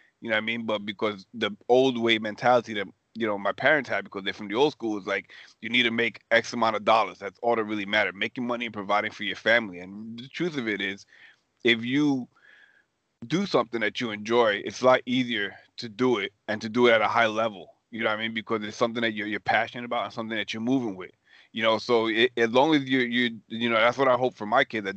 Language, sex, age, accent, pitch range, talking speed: English, male, 30-49, American, 105-120 Hz, 265 wpm